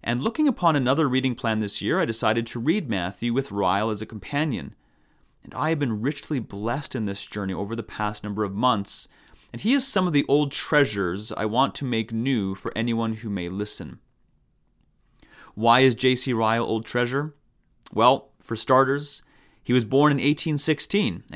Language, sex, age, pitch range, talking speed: English, male, 30-49, 110-145 Hz, 185 wpm